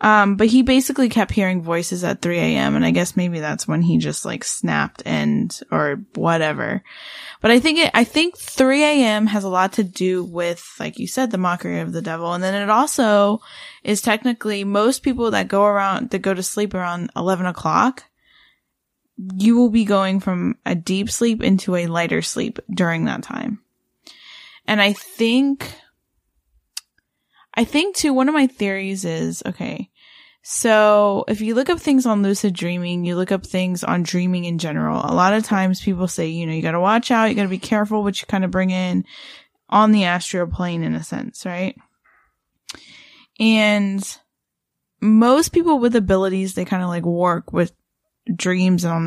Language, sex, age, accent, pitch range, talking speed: English, female, 10-29, American, 175-230 Hz, 185 wpm